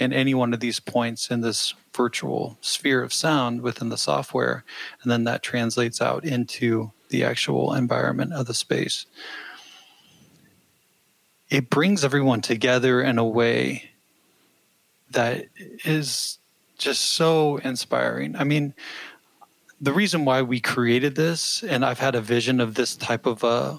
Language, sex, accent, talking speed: English, male, American, 140 wpm